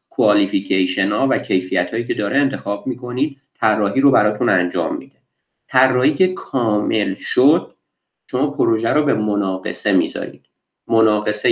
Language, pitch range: Persian, 105-140 Hz